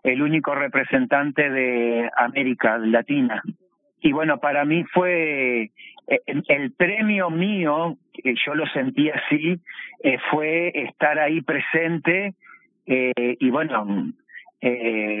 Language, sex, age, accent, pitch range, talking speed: Spanish, male, 50-69, Argentinian, 125-150 Hz, 115 wpm